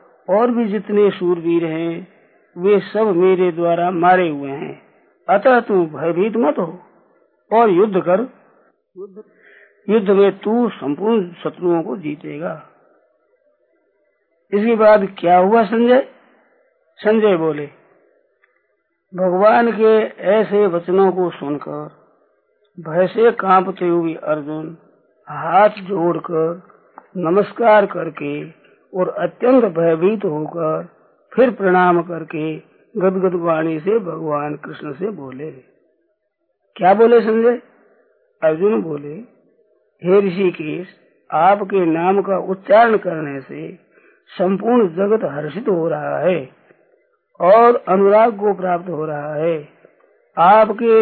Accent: native